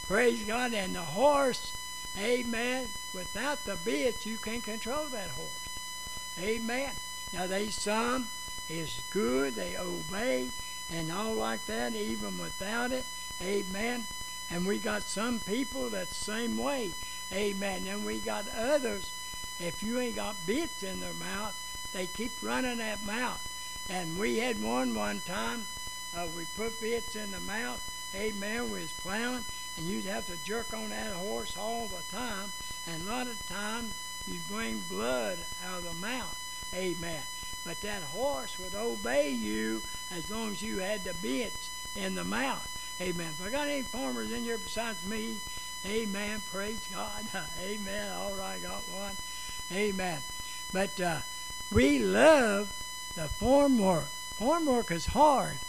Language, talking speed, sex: English, 155 wpm, male